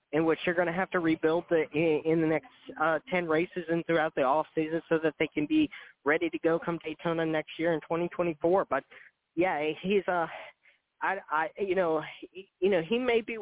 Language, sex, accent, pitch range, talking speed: English, male, American, 155-190 Hz, 225 wpm